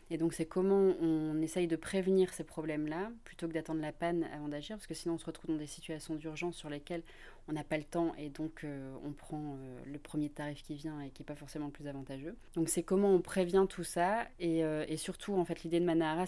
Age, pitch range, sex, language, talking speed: 20-39, 150-170 Hz, female, French, 255 wpm